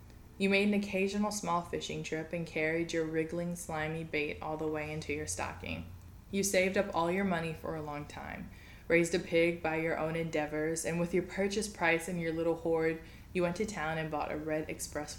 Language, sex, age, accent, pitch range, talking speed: English, female, 20-39, American, 155-175 Hz, 215 wpm